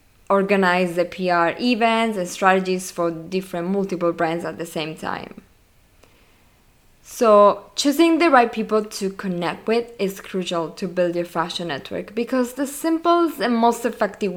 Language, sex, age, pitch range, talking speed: English, female, 20-39, 175-230 Hz, 145 wpm